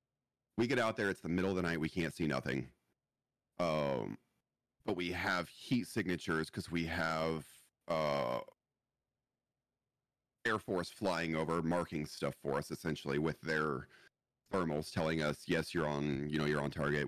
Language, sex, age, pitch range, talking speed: English, male, 30-49, 80-110 Hz, 160 wpm